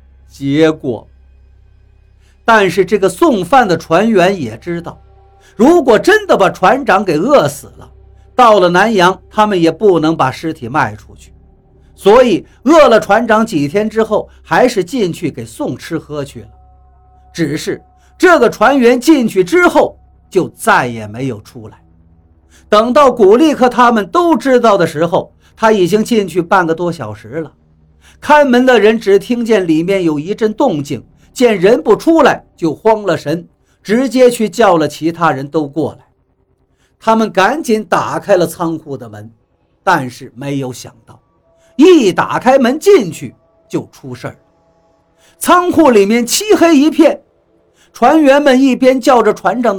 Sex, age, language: male, 50-69, Chinese